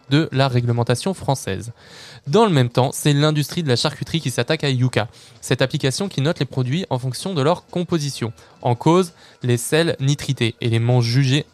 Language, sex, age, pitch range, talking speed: French, male, 20-39, 125-155 Hz, 180 wpm